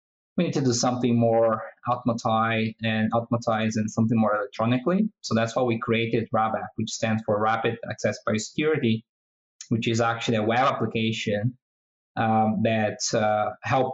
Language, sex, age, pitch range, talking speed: English, male, 20-39, 110-130 Hz, 155 wpm